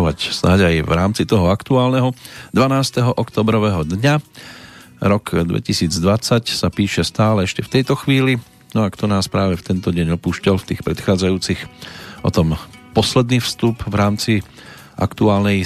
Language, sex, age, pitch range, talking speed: Slovak, male, 40-59, 90-115 Hz, 140 wpm